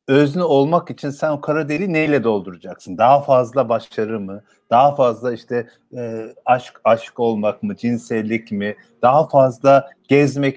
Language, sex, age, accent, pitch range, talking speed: Turkish, male, 50-69, native, 115-160 Hz, 150 wpm